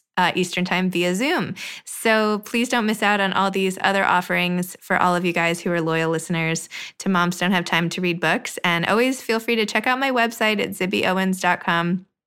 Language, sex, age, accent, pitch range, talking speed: English, female, 20-39, American, 170-210 Hz, 210 wpm